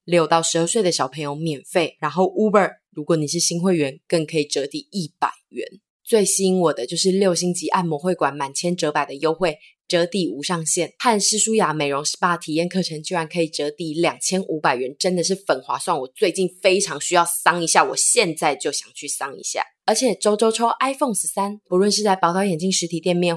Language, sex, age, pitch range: Chinese, female, 20-39, 160-190 Hz